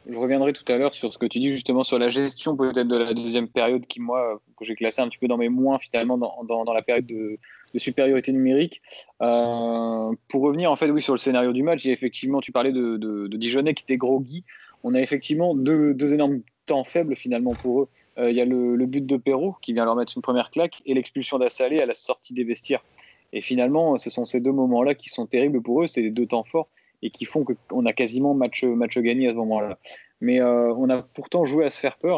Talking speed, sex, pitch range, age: 250 wpm, male, 120-150 Hz, 20-39